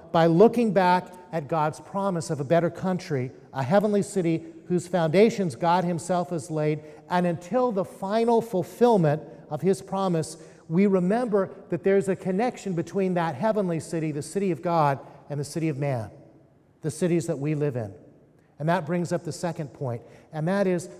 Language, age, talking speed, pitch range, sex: English, 50-69, 175 wpm, 150-185 Hz, male